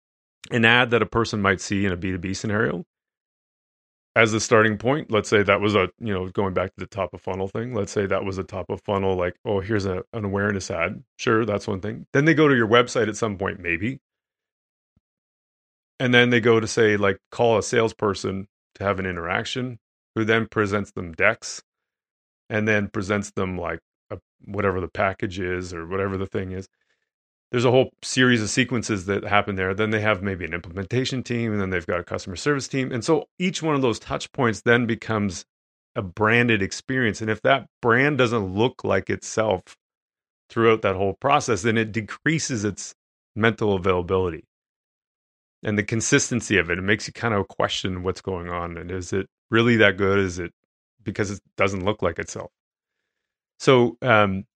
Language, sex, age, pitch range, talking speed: English, male, 30-49, 95-115 Hz, 195 wpm